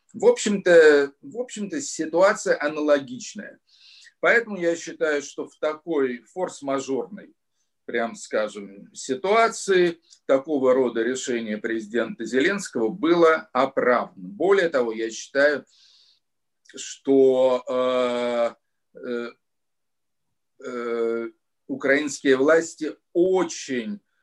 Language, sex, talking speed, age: English, male, 75 wpm, 50-69